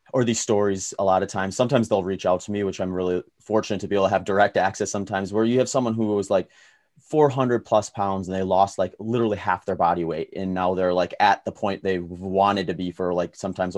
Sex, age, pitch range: male, 30-49, 95-115 Hz